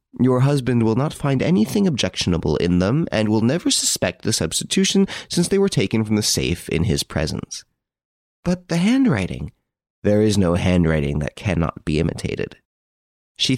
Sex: male